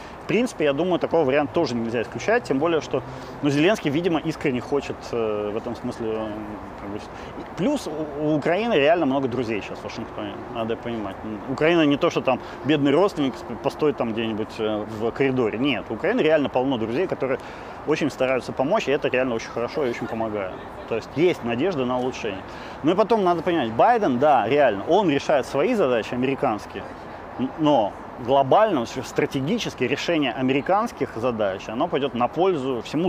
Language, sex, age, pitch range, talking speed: Ukrainian, male, 30-49, 110-150 Hz, 165 wpm